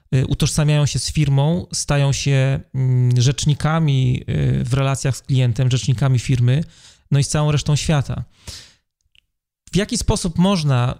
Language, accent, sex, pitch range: Polish, native, male, 125-145 Hz